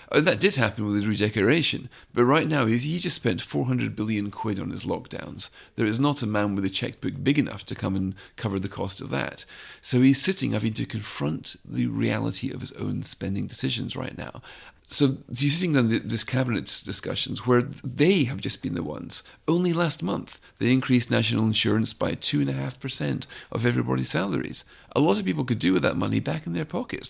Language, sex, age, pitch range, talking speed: English, male, 40-59, 105-135 Hz, 210 wpm